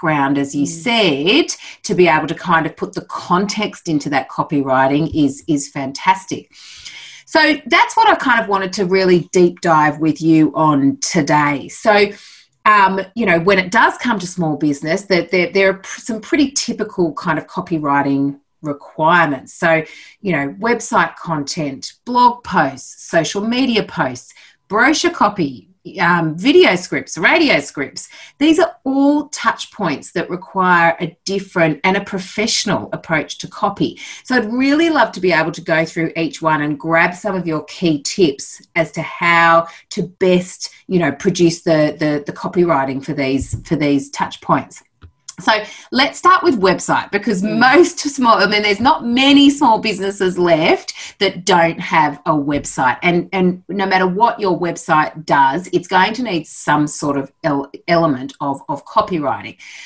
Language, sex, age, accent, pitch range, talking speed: English, female, 30-49, Australian, 160-225 Hz, 165 wpm